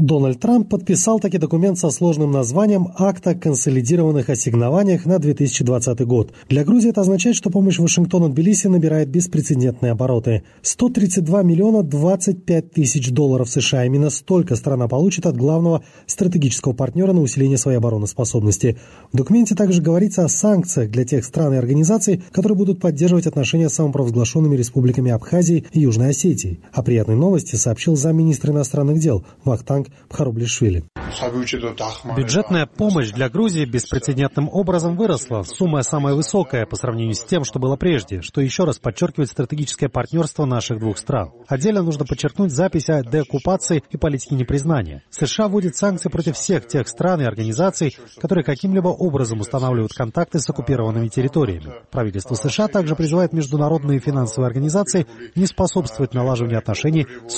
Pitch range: 125-175 Hz